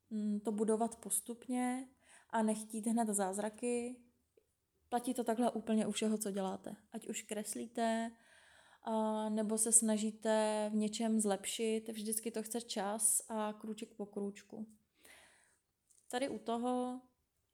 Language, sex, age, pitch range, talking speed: Czech, female, 20-39, 210-230 Hz, 120 wpm